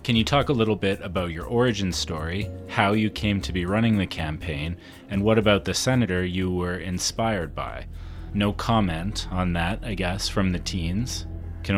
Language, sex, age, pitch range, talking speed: English, male, 30-49, 85-105 Hz, 190 wpm